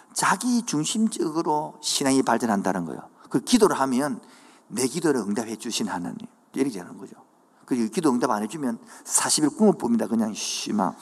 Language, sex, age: Korean, male, 50-69